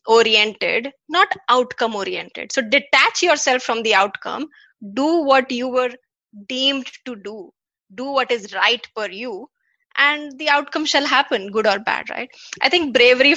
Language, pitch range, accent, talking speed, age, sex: English, 230-285 Hz, Indian, 155 wpm, 20-39, female